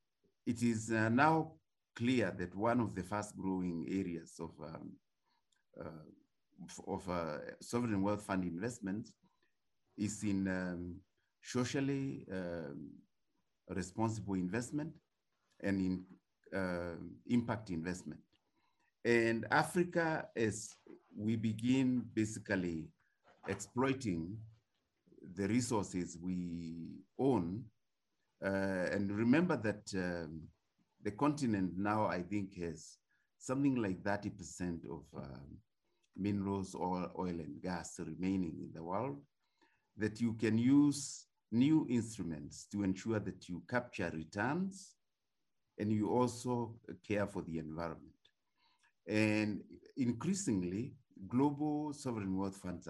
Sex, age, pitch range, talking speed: male, 50-69, 90-120 Hz, 105 wpm